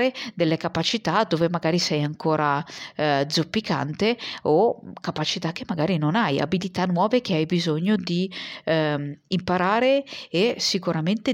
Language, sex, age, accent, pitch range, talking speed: Italian, female, 40-59, native, 165-215 Hz, 125 wpm